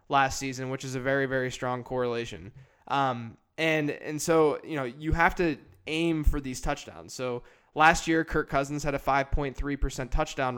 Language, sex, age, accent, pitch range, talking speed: English, male, 20-39, American, 130-150 Hz, 180 wpm